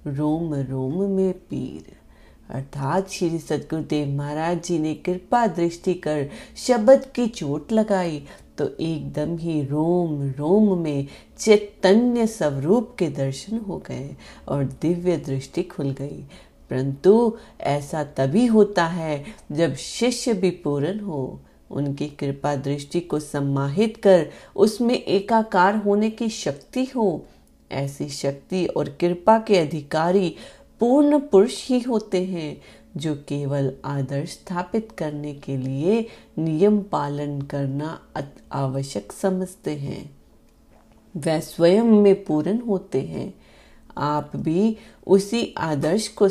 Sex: female